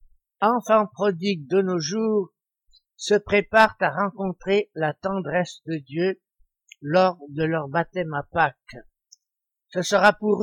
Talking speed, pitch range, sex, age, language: 125 wpm, 165-200 Hz, male, 60-79, French